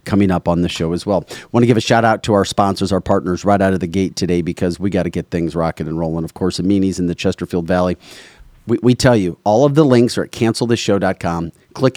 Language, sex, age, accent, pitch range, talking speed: English, male, 40-59, American, 95-120 Hz, 260 wpm